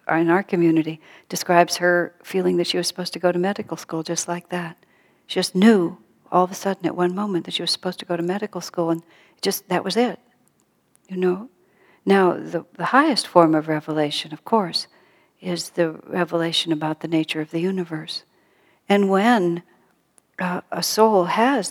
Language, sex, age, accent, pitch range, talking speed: English, female, 60-79, American, 170-215 Hz, 190 wpm